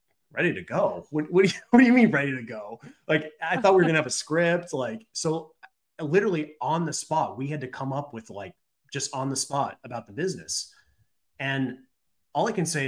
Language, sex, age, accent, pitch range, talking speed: English, male, 30-49, American, 120-155 Hz, 220 wpm